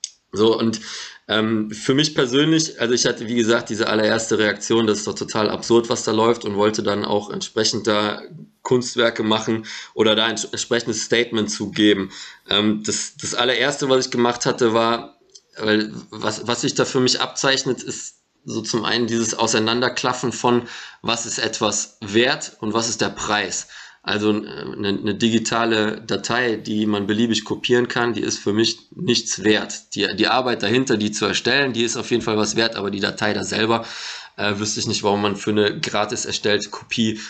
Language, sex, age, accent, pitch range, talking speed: German, male, 20-39, German, 105-120 Hz, 185 wpm